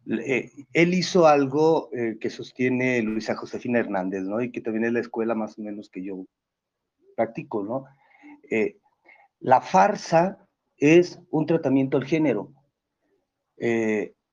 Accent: Mexican